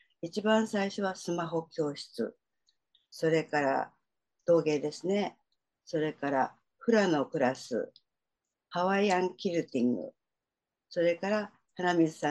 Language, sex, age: Japanese, female, 60-79